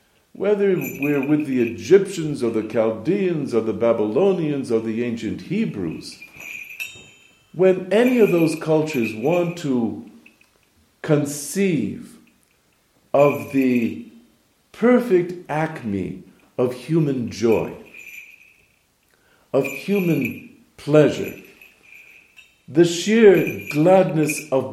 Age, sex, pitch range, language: 60-79, male, 145-205 Hz, English